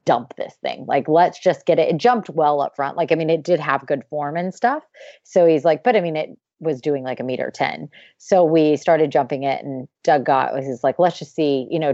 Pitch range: 145-185 Hz